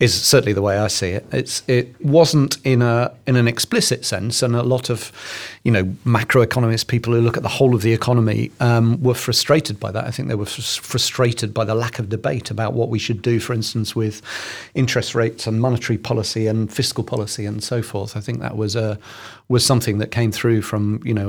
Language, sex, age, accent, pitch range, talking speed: English, male, 40-59, British, 105-120 Hz, 225 wpm